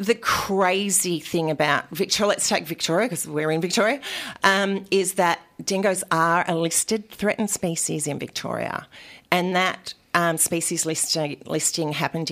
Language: English